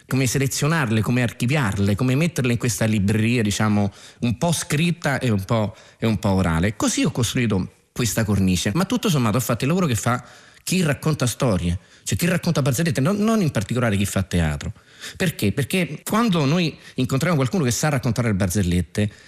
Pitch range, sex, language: 105-155 Hz, male, Italian